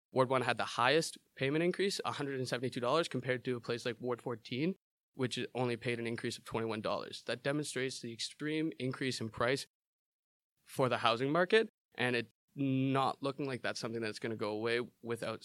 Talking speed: 180 wpm